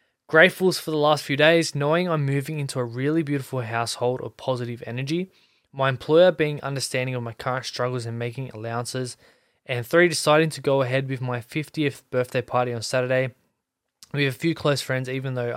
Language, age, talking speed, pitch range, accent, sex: English, 20-39, 190 wpm, 125-155 Hz, Australian, male